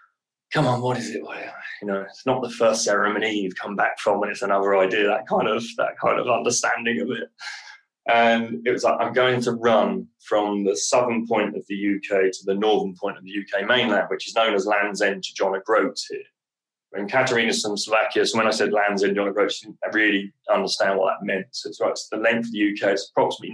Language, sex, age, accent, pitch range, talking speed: English, male, 20-39, British, 105-130 Hz, 230 wpm